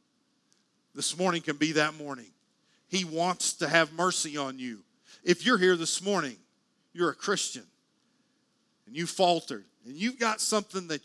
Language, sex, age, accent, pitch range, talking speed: English, male, 50-69, American, 155-210 Hz, 160 wpm